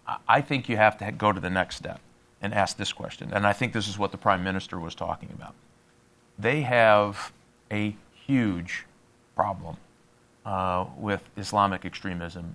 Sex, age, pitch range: male, 40-59, 95-120 Hz